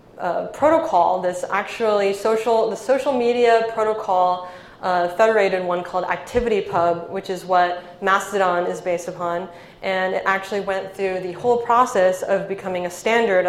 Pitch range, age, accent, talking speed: 185-225 Hz, 20-39, American, 145 wpm